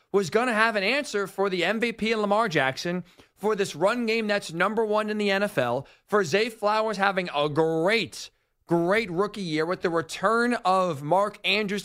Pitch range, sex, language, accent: 180-235 Hz, male, English, American